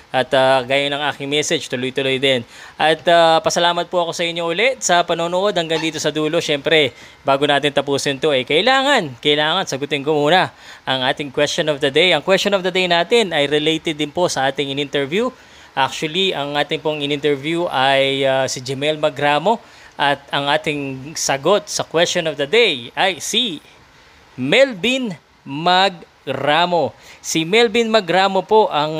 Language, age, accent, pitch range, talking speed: Filipino, 20-39, native, 140-180 Hz, 170 wpm